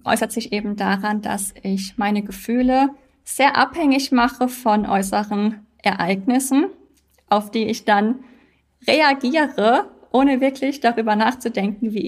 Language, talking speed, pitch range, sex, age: German, 120 wpm, 205-250 Hz, female, 20-39